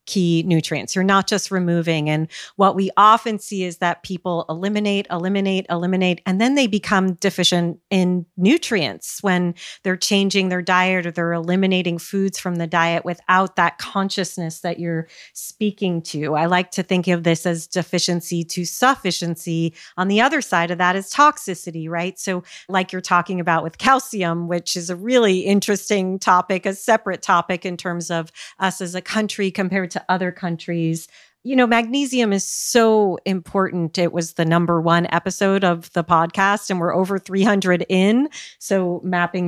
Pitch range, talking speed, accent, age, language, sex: 175-205 Hz, 170 wpm, American, 40-59, English, female